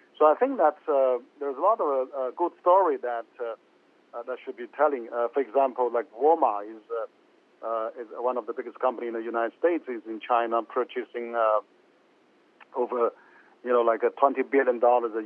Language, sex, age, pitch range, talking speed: English, male, 50-69, 115-135 Hz, 190 wpm